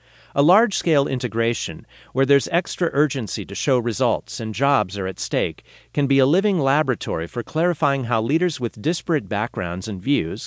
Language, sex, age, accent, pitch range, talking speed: English, male, 50-69, American, 105-145 Hz, 165 wpm